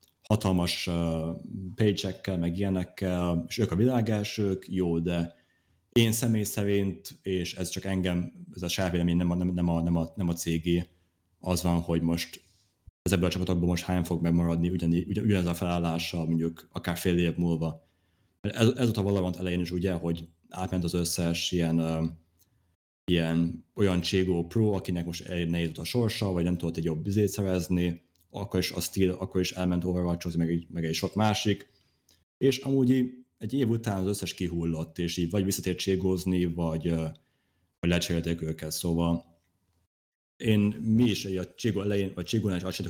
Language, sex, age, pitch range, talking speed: Hungarian, male, 30-49, 85-95 Hz, 155 wpm